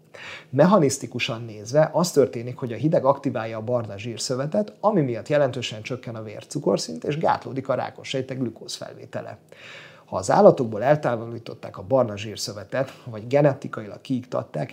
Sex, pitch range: male, 115-140 Hz